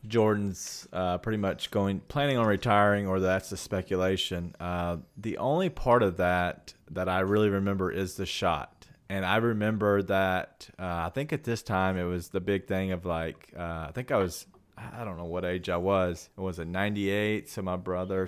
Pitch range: 90-105 Hz